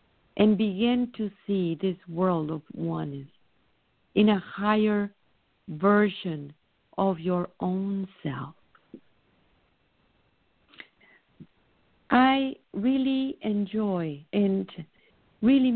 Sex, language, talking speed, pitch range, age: female, English, 80 wpm, 165-210 Hz, 50-69